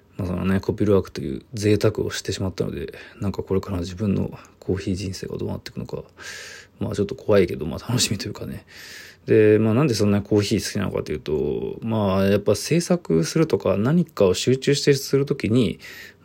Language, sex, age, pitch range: Japanese, male, 20-39, 95-120 Hz